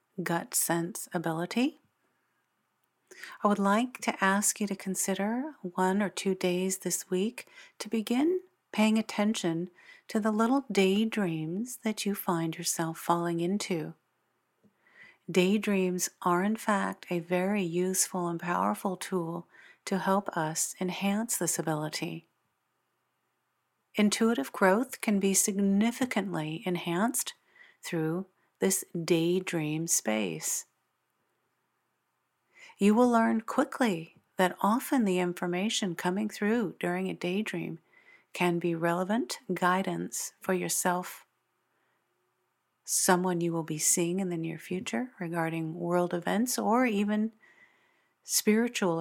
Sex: female